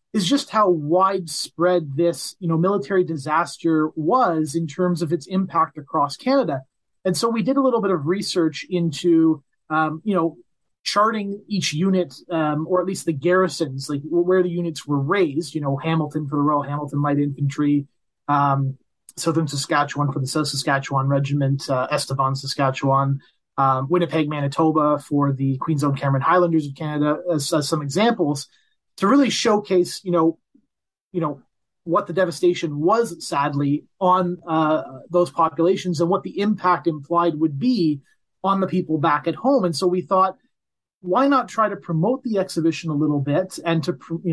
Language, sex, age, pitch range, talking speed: English, male, 30-49, 150-185 Hz, 170 wpm